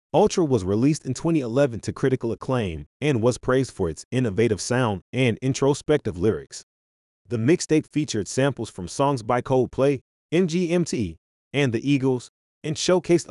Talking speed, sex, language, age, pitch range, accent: 145 wpm, male, English, 30-49, 100-140 Hz, American